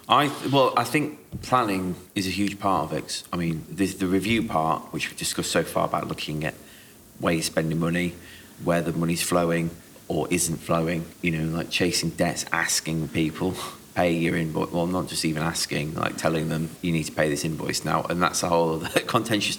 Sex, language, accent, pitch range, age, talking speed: male, English, British, 85-95 Hz, 30-49, 205 wpm